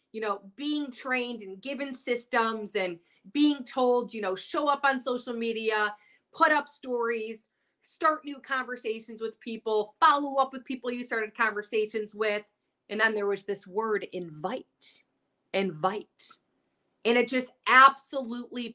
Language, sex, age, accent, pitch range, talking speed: English, female, 30-49, American, 215-275 Hz, 145 wpm